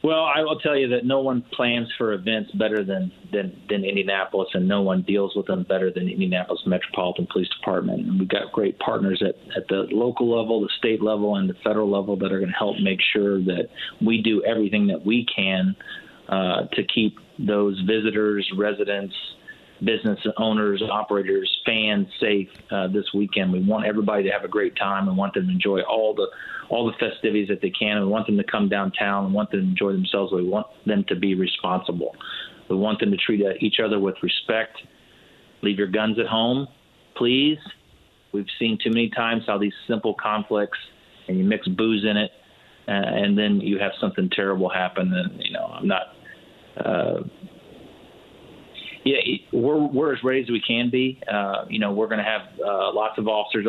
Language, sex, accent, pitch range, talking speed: English, male, American, 100-120 Hz, 195 wpm